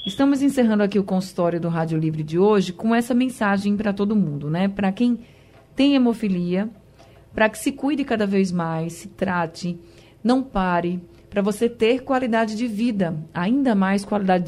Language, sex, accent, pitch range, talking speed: Portuguese, female, Brazilian, 180-225 Hz, 170 wpm